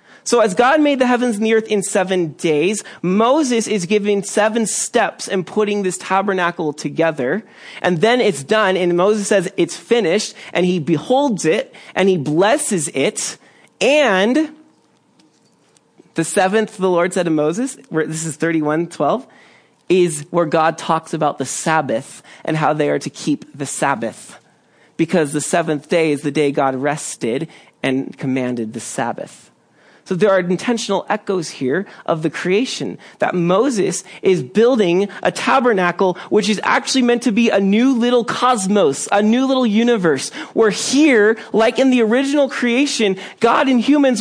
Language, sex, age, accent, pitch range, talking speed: English, male, 30-49, American, 170-235 Hz, 160 wpm